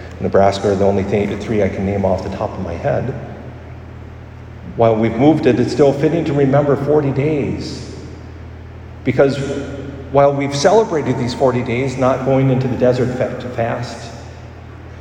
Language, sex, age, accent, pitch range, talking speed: English, male, 50-69, American, 105-135 Hz, 155 wpm